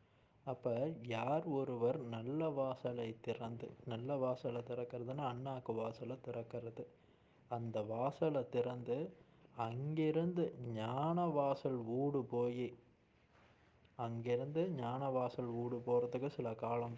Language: Tamil